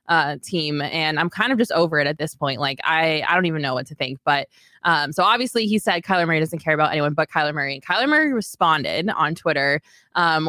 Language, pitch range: English, 155-185 Hz